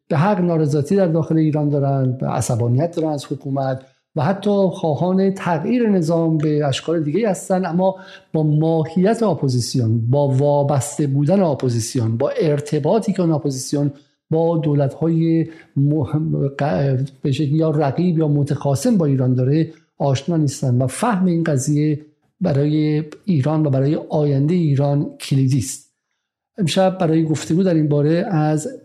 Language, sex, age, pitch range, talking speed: Persian, male, 50-69, 130-160 Hz, 135 wpm